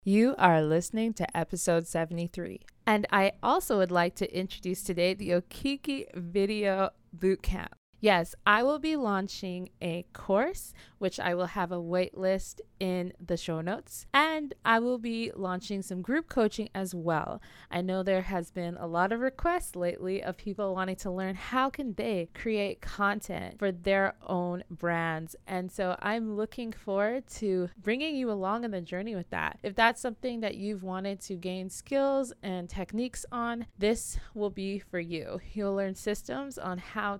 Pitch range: 180-230 Hz